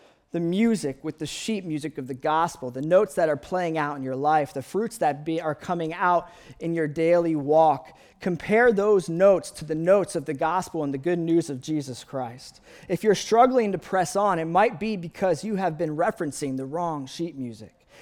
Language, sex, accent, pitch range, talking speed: English, male, American, 155-195 Hz, 205 wpm